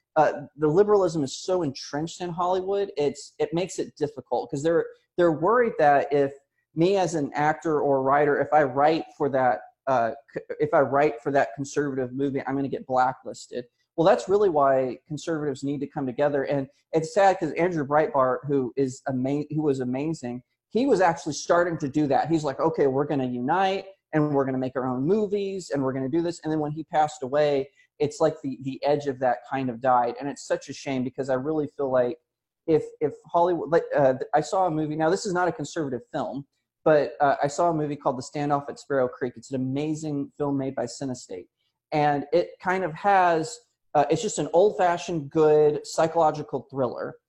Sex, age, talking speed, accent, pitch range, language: male, 30-49, 210 wpm, American, 135-170 Hz, English